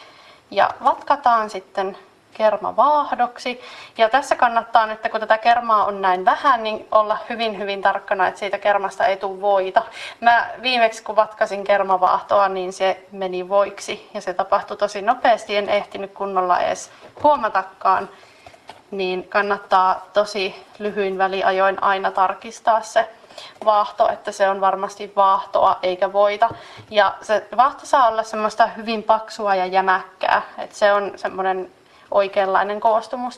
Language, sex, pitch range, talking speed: Finnish, female, 195-225 Hz, 135 wpm